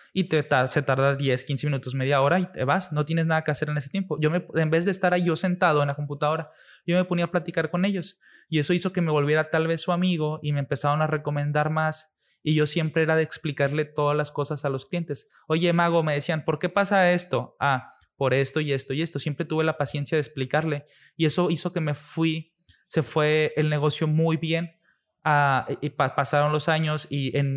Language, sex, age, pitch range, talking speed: Spanish, male, 20-39, 140-165 Hz, 235 wpm